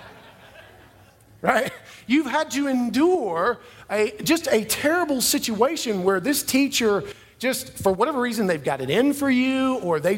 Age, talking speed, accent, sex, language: 50-69, 145 wpm, American, male, English